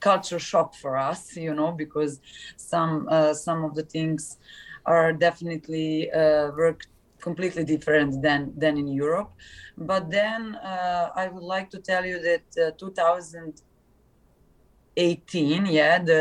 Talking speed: 130 wpm